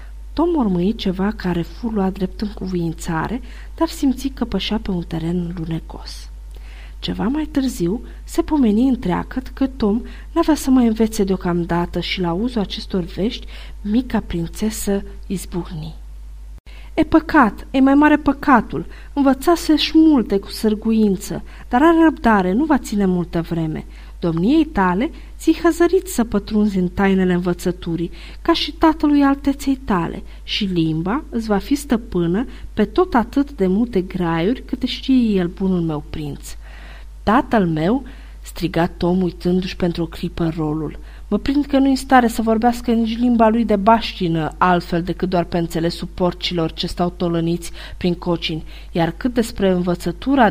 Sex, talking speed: female, 145 wpm